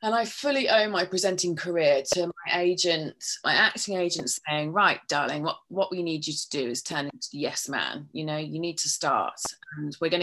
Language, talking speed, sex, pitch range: English, 225 wpm, female, 150-200 Hz